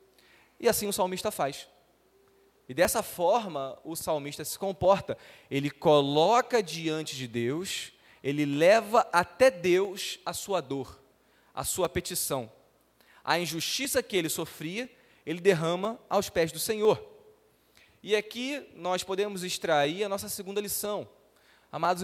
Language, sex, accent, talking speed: Portuguese, male, Brazilian, 130 wpm